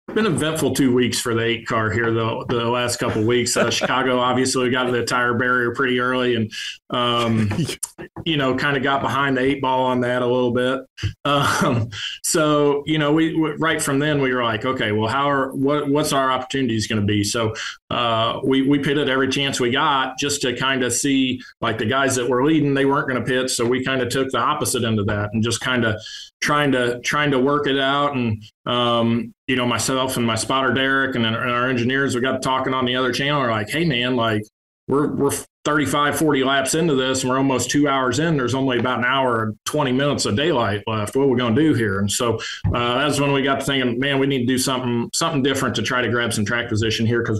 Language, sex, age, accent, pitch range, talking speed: English, male, 20-39, American, 120-135 Hz, 245 wpm